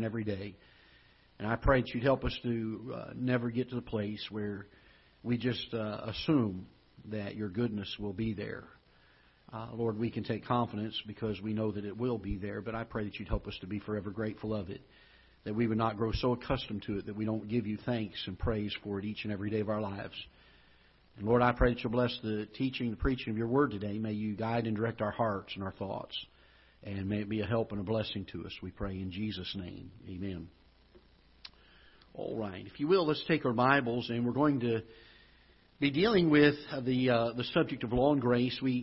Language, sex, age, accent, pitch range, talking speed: English, male, 50-69, American, 105-130 Hz, 225 wpm